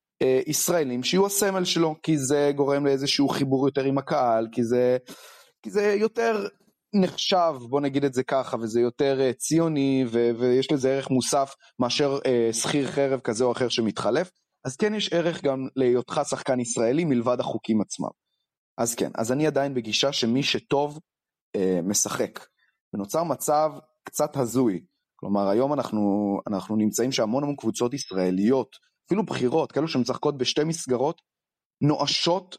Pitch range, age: 120-150 Hz, 30-49